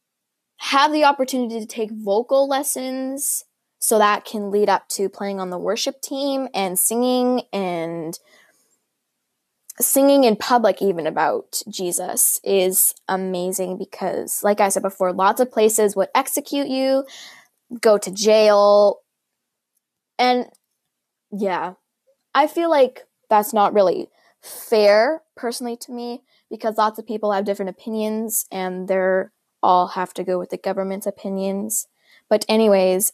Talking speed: 135 wpm